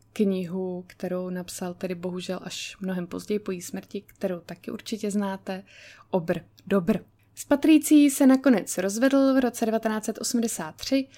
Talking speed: 130 wpm